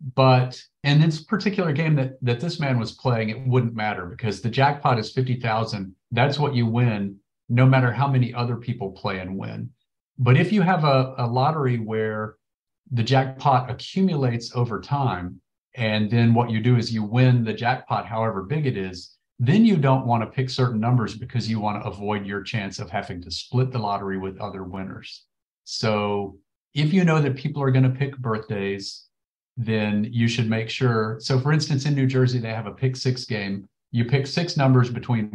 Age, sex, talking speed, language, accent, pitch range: 40-59, male, 195 wpm, English, American, 110-130 Hz